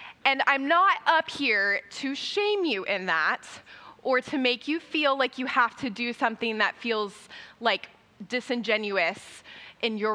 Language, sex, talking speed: English, female, 160 wpm